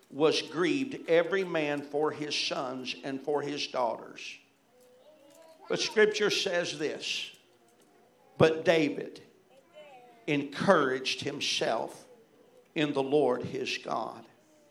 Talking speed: 100 wpm